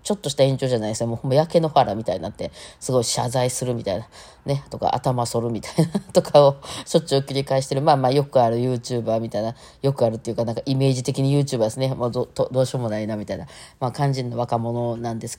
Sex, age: female, 20-39